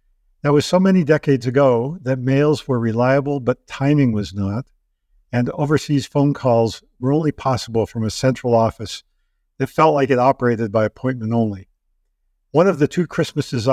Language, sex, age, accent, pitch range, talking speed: English, male, 50-69, American, 110-140 Hz, 165 wpm